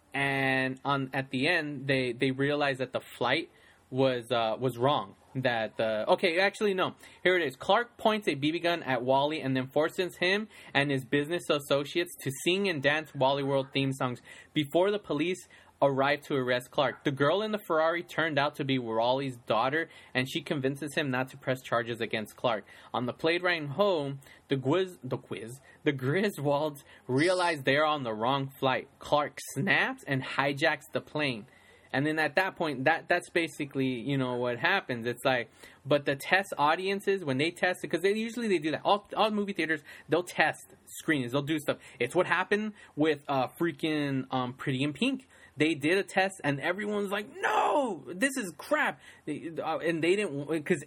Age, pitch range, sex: 20-39, 135-180 Hz, male